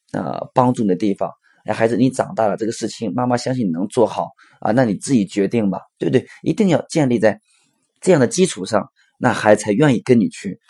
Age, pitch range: 20-39, 105-130 Hz